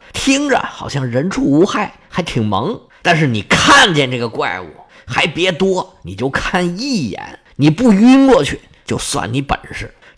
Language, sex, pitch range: Chinese, male, 135-215 Hz